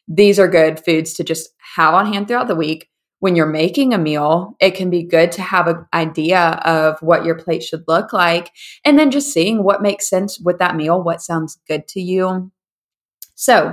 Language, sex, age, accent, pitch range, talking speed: English, female, 20-39, American, 160-185 Hz, 210 wpm